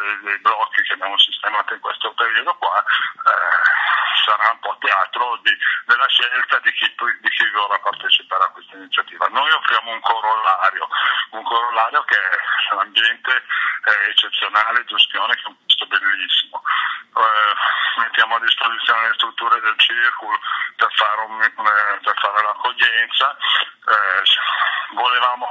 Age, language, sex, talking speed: 50-69, Italian, male, 135 wpm